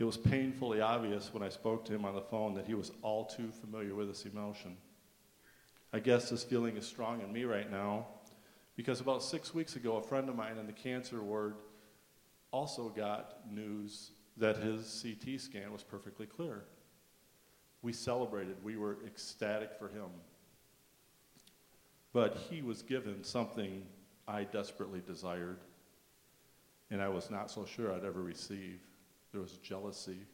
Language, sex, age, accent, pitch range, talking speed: English, male, 50-69, American, 100-115 Hz, 160 wpm